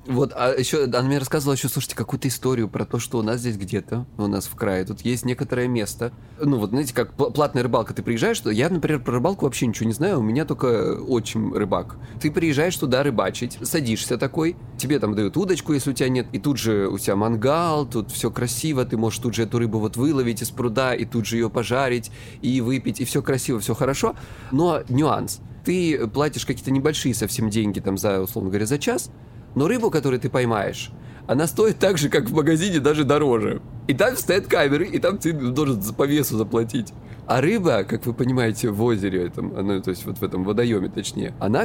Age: 20-39